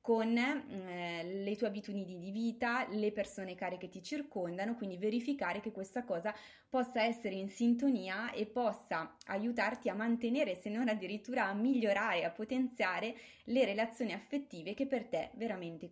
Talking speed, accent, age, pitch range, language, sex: 155 wpm, native, 20-39, 190-240 Hz, Italian, female